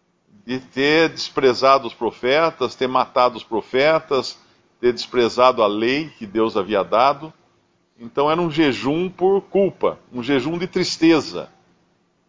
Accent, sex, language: Brazilian, male, Portuguese